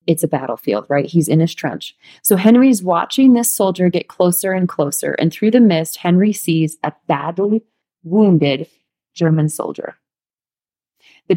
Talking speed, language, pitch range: 155 wpm, English, 160-205 Hz